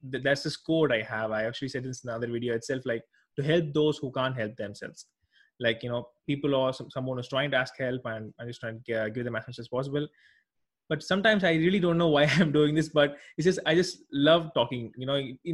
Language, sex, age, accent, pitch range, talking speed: English, male, 20-39, Indian, 125-155 Hz, 245 wpm